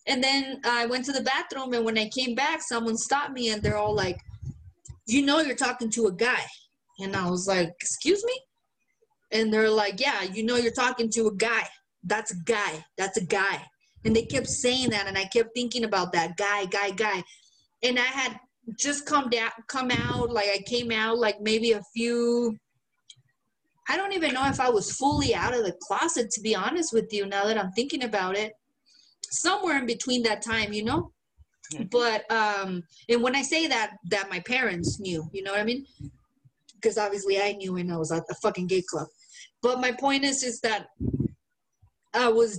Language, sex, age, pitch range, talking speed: English, female, 20-39, 205-255 Hz, 205 wpm